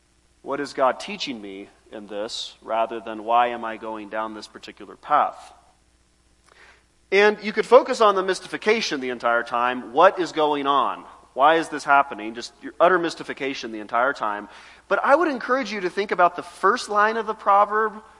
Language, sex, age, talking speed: English, male, 30-49, 185 wpm